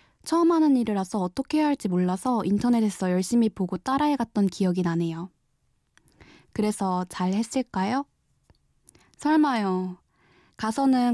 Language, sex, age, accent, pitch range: Korean, female, 20-39, native, 190-265 Hz